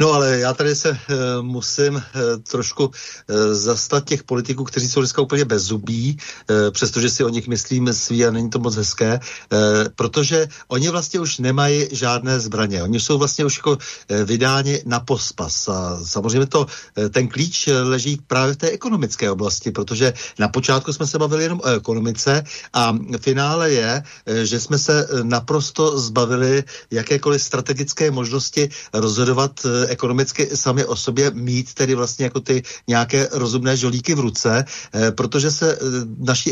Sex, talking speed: male, 165 wpm